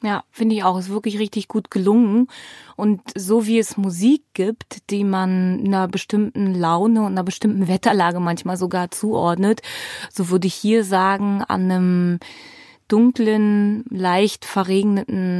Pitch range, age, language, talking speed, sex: 180-220 Hz, 20-39, German, 150 wpm, female